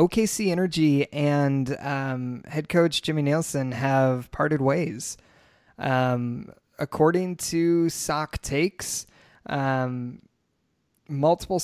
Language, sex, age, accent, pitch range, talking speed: English, male, 20-39, American, 135-160 Hz, 95 wpm